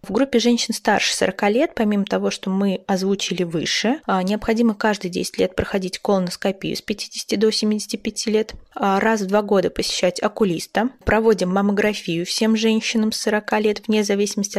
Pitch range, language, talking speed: 190-225 Hz, Russian, 155 wpm